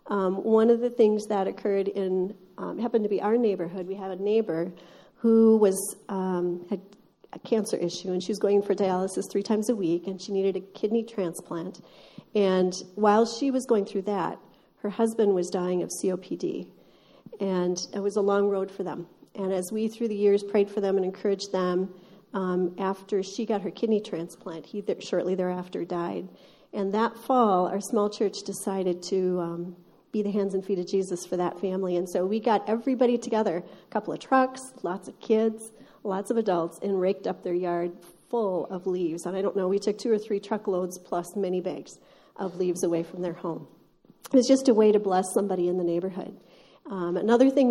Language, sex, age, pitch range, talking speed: English, female, 40-59, 180-215 Hz, 205 wpm